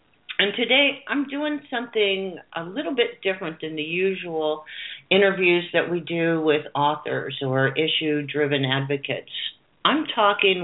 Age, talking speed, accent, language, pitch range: 50-69, 130 wpm, American, English, 145-200 Hz